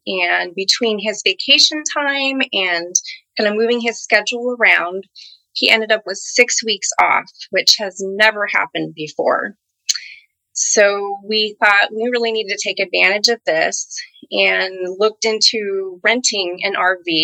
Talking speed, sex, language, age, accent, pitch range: 145 wpm, female, English, 20-39, American, 185-230 Hz